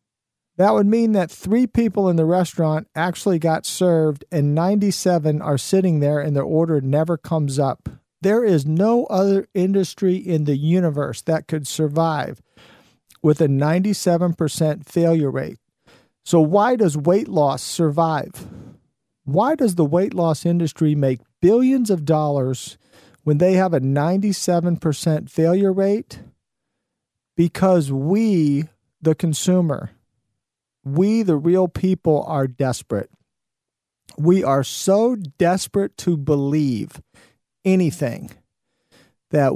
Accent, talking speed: American, 120 wpm